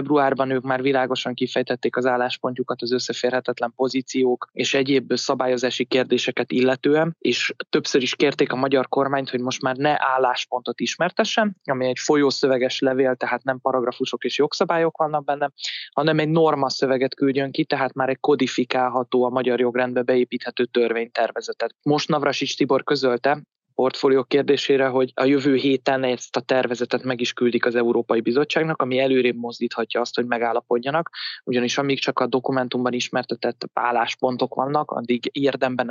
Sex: male